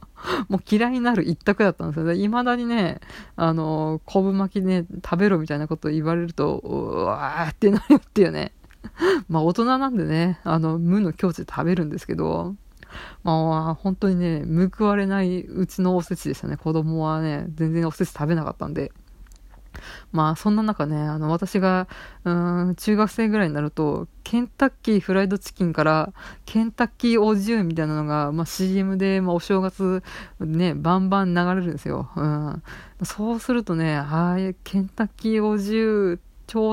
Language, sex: Japanese, female